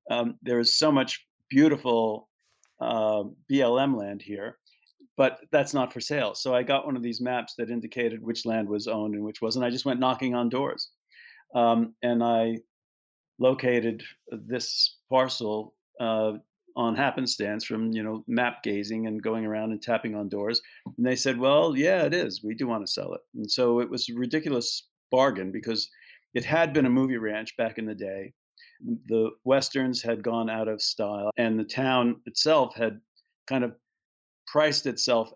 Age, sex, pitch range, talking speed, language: 50-69, male, 110-130 Hz, 180 wpm, English